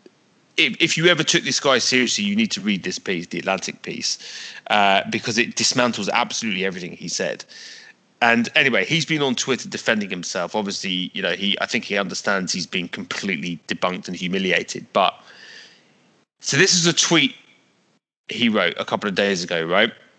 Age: 30-49